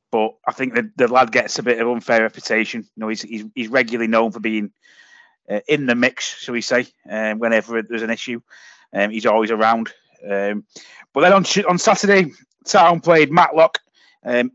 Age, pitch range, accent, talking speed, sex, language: 30-49, 115-135 Hz, British, 195 wpm, male, English